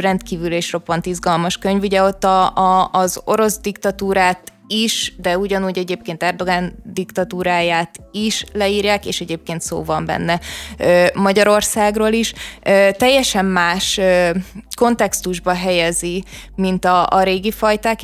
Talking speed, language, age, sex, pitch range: 120 wpm, Hungarian, 20-39, female, 180-210 Hz